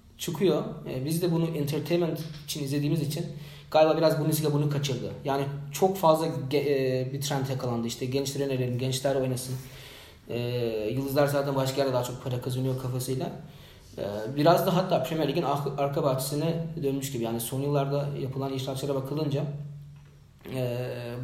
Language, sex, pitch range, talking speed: Turkish, male, 135-165 Hz, 155 wpm